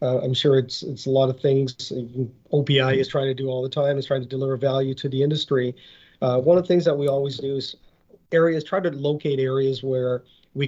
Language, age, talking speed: English, 40-59, 235 wpm